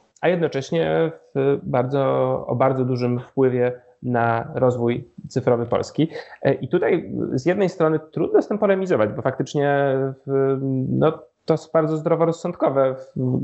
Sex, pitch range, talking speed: male, 125-155 Hz, 130 wpm